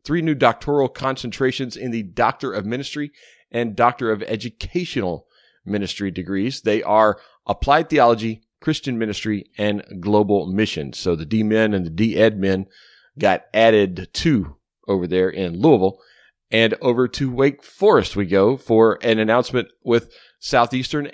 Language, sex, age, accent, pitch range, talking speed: English, male, 40-59, American, 95-125 Hz, 140 wpm